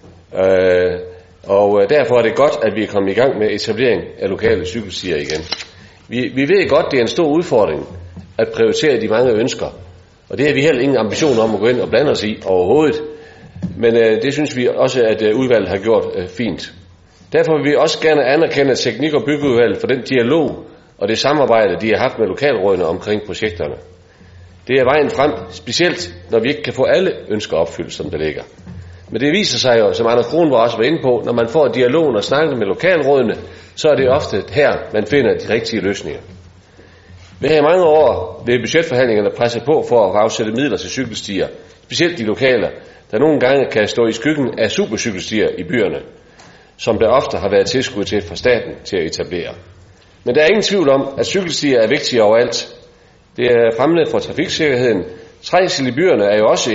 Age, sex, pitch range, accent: 40-59, male, 90-135 Hz, native